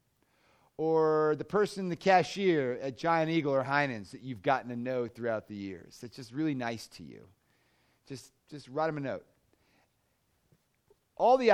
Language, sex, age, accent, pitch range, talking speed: English, male, 40-59, American, 130-170 Hz, 165 wpm